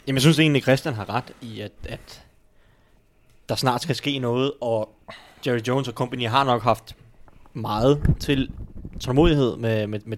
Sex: male